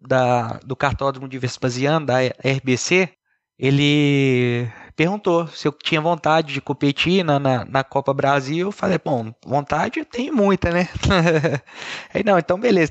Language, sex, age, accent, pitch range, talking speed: Portuguese, male, 20-39, Brazilian, 130-160 Hz, 130 wpm